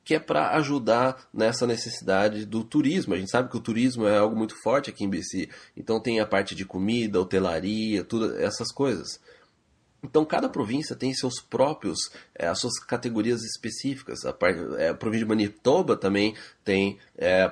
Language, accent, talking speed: Spanish, Brazilian, 170 wpm